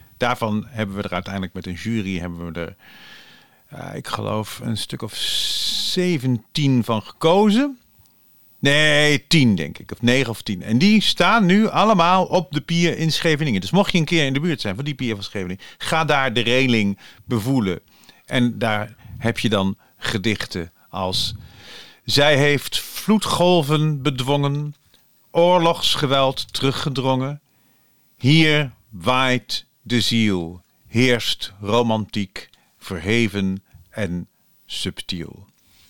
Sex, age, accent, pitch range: male, 40-59, Dutch, 105-150 Hz